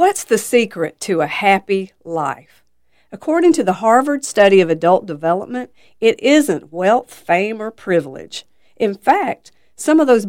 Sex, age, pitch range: female, 50-69, 165-235 Hz